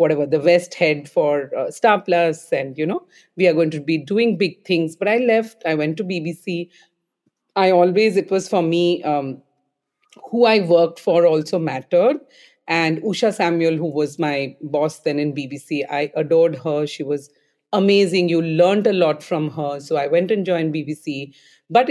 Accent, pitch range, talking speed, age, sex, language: Indian, 155-200 Hz, 185 wpm, 40-59, female, English